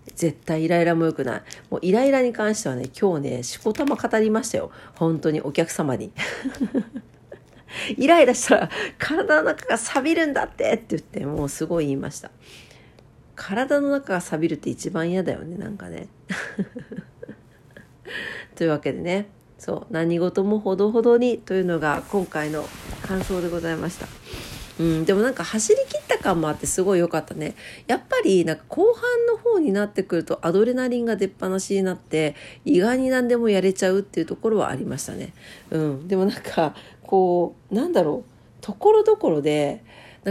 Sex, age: female, 50-69